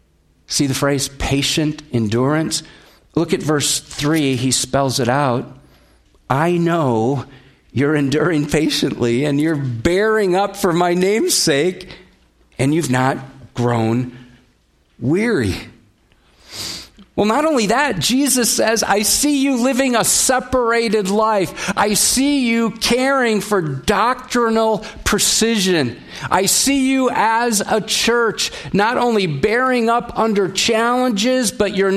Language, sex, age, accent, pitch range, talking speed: English, male, 50-69, American, 145-220 Hz, 120 wpm